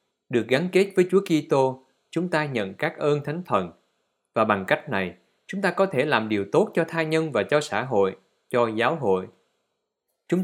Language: Vietnamese